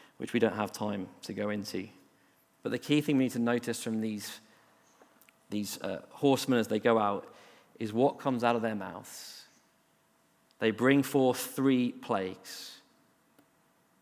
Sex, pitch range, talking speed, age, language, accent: male, 110-130 Hz, 160 wpm, 40-59, English, British